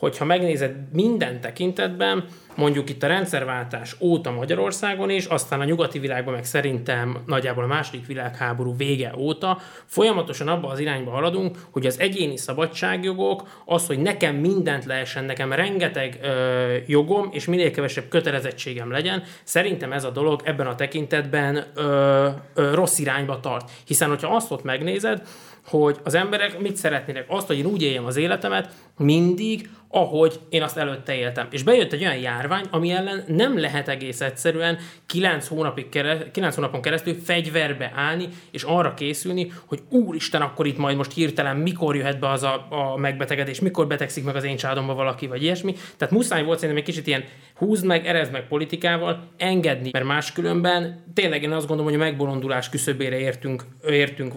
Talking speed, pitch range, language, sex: 165 wpm, 135-175 Hz, Hungarian, male